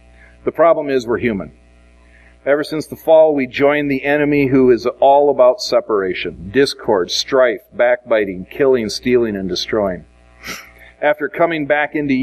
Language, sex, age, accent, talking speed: English, male, 40-59, American, 140 wpm